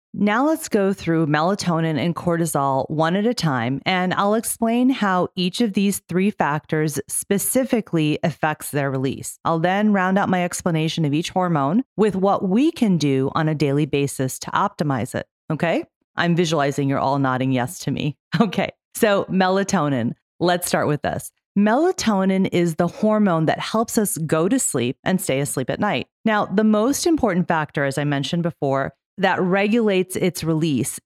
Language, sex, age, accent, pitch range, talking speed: English, female, 40-59, American, 155-210 Hz, 170 wpm